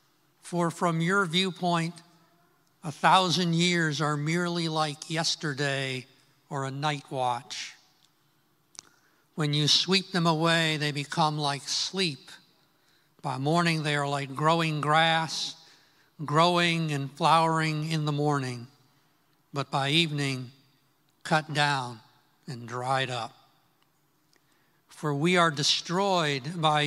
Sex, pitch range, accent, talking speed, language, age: male, 140-165 Hz, American, 110 wpm, English, 60-79